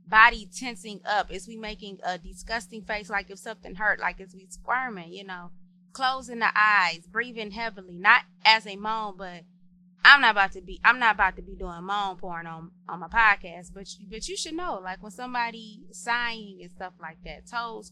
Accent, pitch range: American, 180-235 Hz